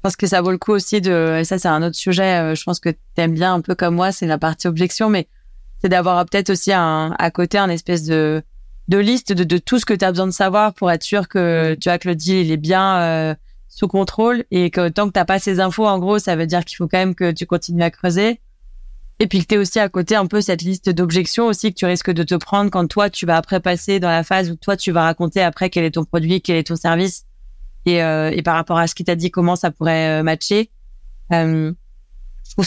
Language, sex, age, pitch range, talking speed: French, female, 20-39, 175-205 Hz, 275 wpm